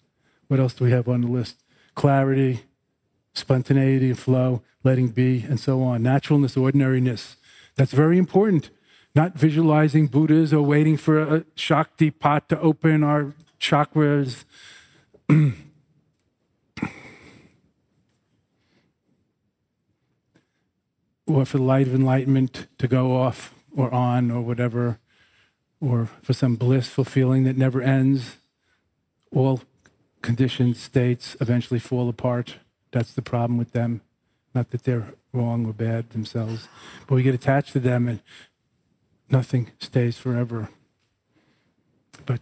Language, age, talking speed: English, 40-59, 120 wpm